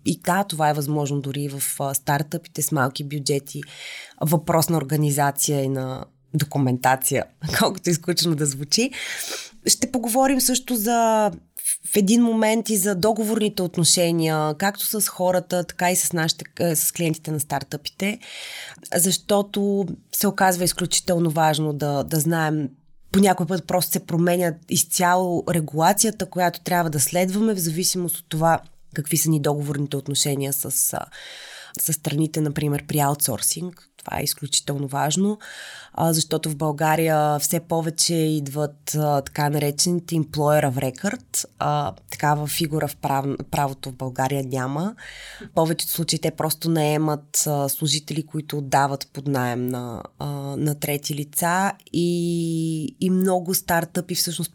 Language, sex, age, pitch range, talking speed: Bulgarian, female, 20-39, 145-180 Hz, 135 wpm